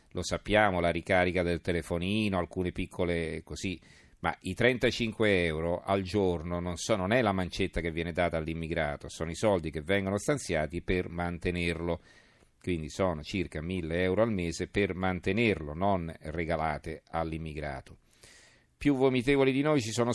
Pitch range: 85-110 Hz